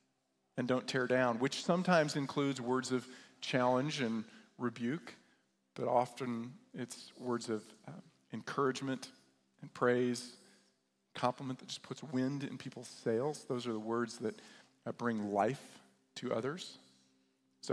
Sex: male